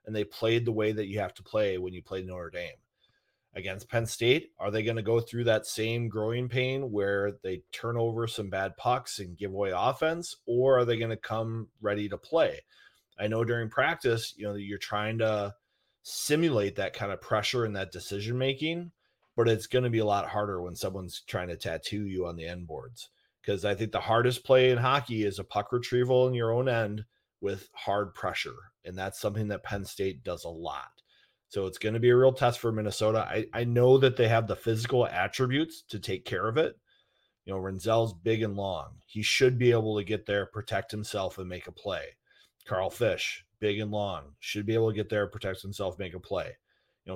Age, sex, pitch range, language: 30-49, male, 100-120 Hz, English